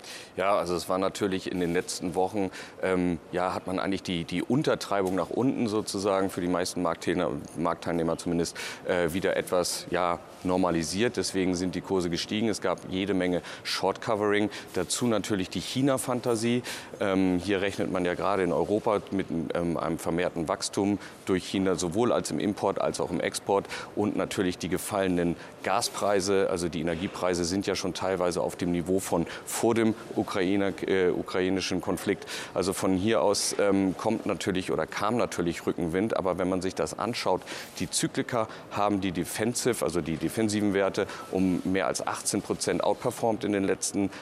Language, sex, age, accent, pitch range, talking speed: German, male, 30-49, German, 90-105 Hz, 165 wpm